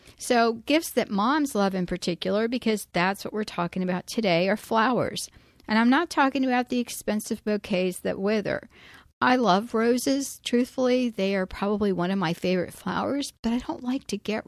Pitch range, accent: 190-240 Hz, American